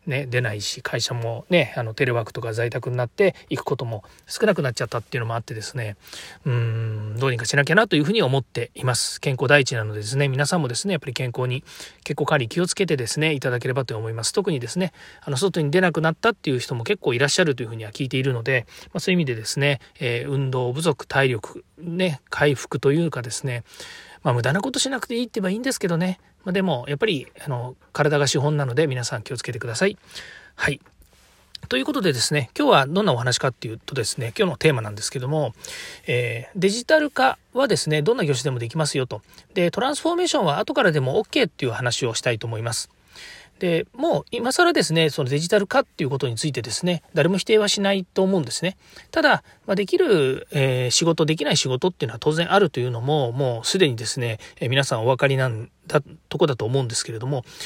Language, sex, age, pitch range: Japanese, male, 40-59, 125-175 Hz